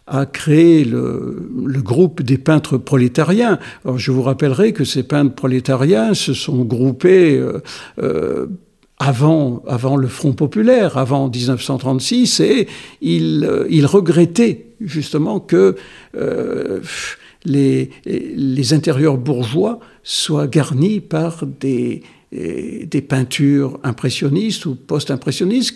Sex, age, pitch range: male, 60-79, 140-200 Hz